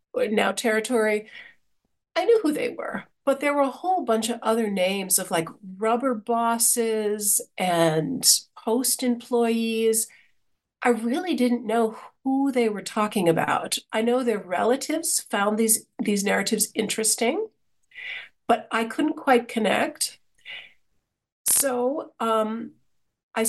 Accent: American